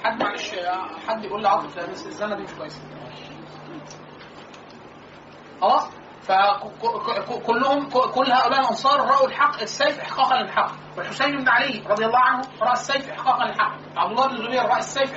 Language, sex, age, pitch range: Arabic, male, 30-49, 210-275 Hz